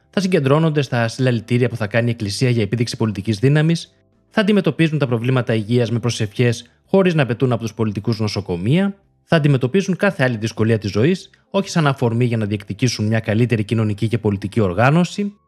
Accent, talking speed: native, 180 wpm